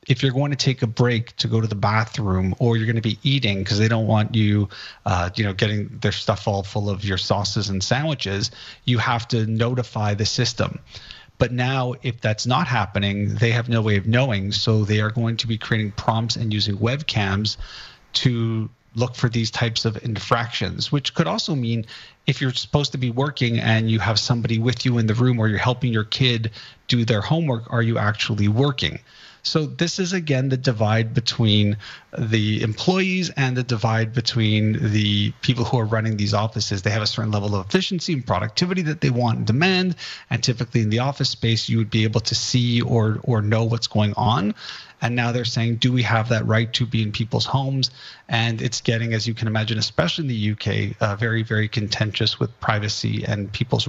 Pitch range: 110-125 Hz